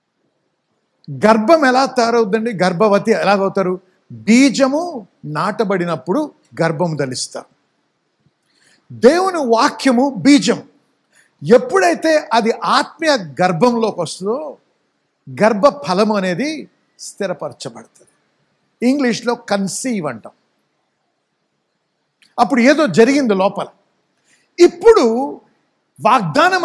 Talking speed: 70 wpm